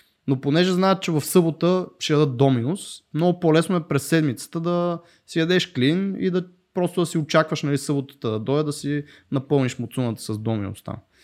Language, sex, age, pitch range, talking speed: Bulgarian, male, 20-39, 125-165 Hz, 180 wpm